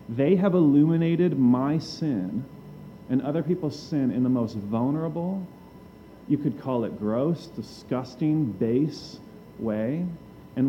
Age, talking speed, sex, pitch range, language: 40-59, 125 wpm, male, 125-160 Hz, English